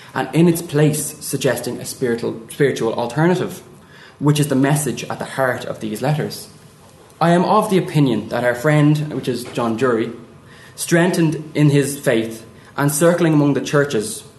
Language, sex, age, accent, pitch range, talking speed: English, male, 20-39, Irish, 120-155 Hz, 165 wpm